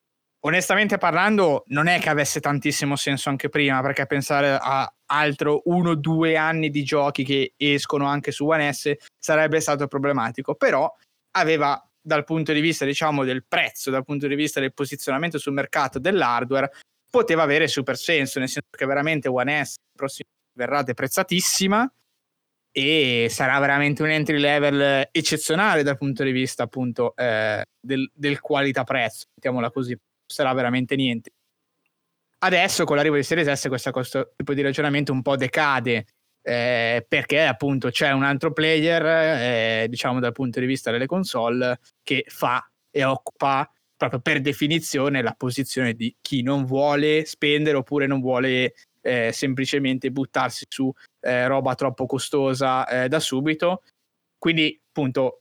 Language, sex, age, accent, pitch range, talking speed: Italian, male, 20-39, native, 130-155 Hz, 150 wpm